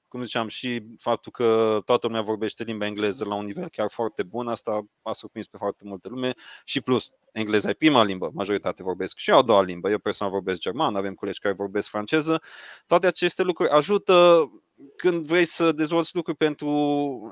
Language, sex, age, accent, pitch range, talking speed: Romanian, male, 20-39, native, 105-135 Hz, 185 wpm